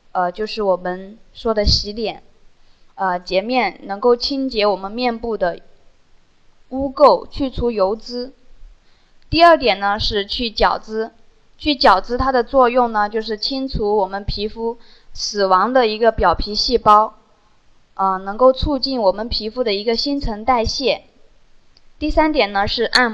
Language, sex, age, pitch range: Chinese, female, 10-29, 200-260 Hz